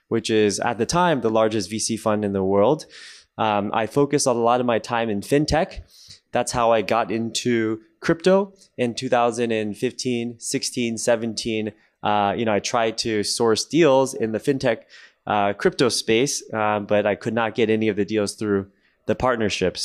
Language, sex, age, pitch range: Japanese, male, 20-39, 100-115 Hz